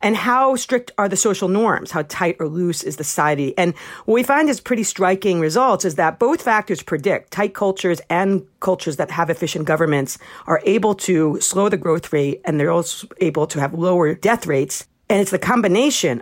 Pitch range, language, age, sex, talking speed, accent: 165-215 Hz, English, 40-59, female, 205 wpm, American